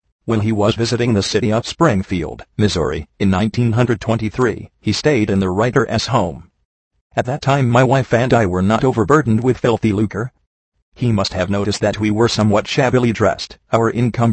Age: 40-59